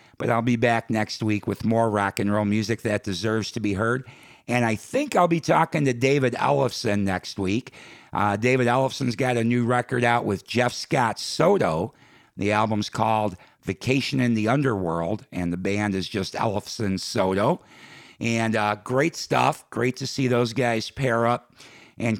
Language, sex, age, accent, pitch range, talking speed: English, male, 50-69, American, 105-130 Hz, 180 wpm